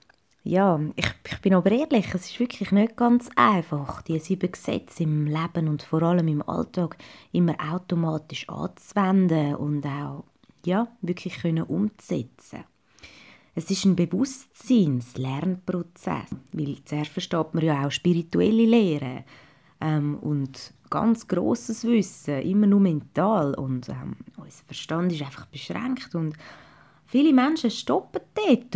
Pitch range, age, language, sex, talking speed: 155-225 Hz, 20-39, German, female, 125 wpm